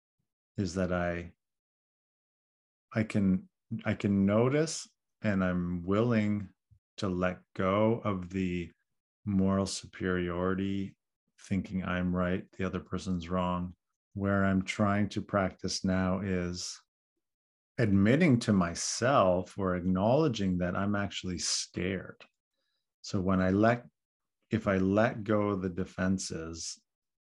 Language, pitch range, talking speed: English, 90-100 Hz, 115 wpm